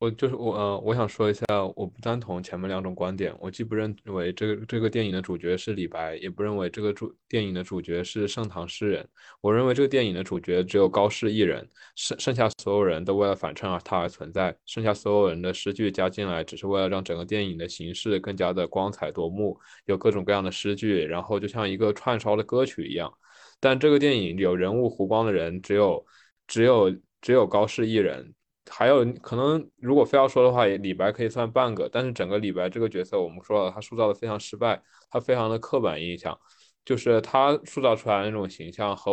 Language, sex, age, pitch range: Chinese, male, 20-39, 95-115 Hz